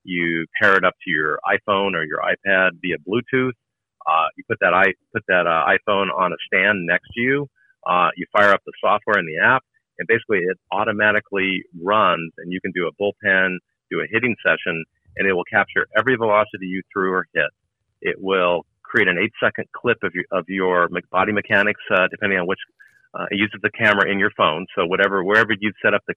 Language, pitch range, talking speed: English, 90-105 Hz, 210 wpm